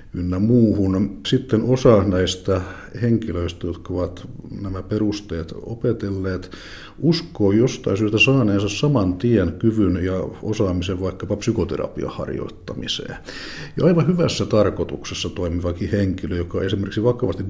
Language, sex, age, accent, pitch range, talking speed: Finnish, male, 60-79, native, 85-105 Hz, 105 wpm